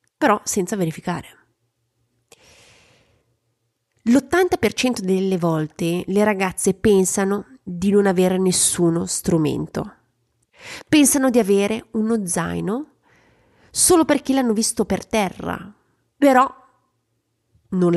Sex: female